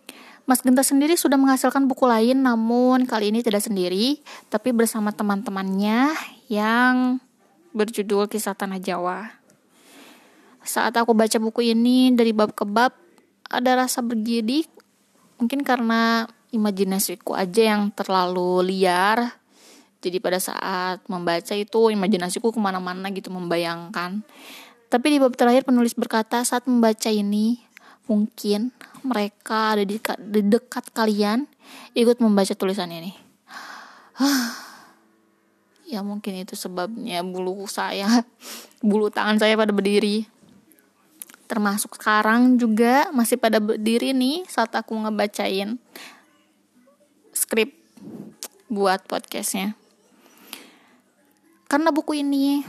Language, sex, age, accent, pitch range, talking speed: Indonesian, female, 20-39, native, 205-250 Hz, 110 wpm